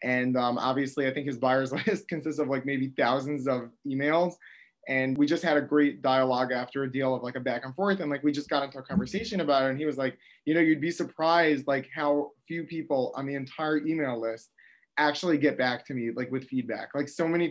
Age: 20-39